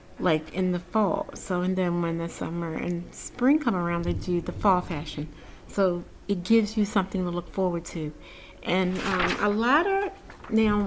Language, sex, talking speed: English, female, 190 wpm